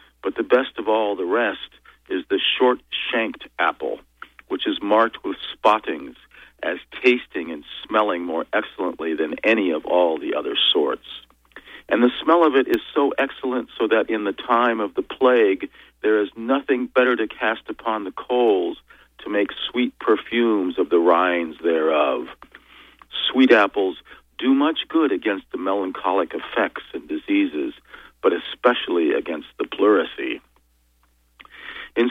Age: 50-69